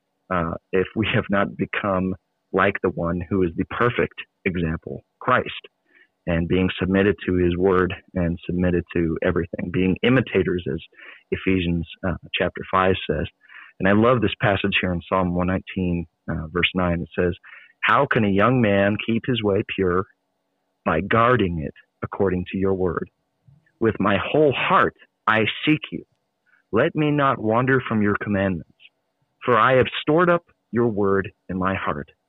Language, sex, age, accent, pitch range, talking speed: English, male, 40-59, American, 95-125 Hz, 160 wpm